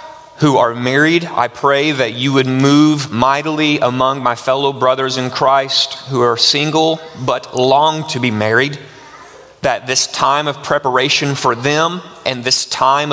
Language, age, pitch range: English, 30-49, 120-145 Hz